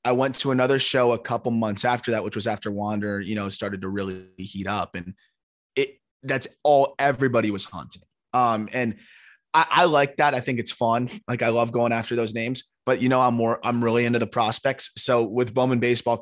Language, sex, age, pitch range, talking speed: English, male, 20-39, 105-125 Hz, 215 wpm